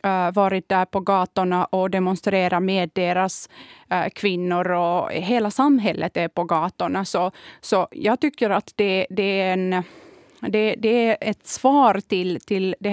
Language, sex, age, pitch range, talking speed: Swedish, female, 30-49, 190-235 Hz, 150 wpm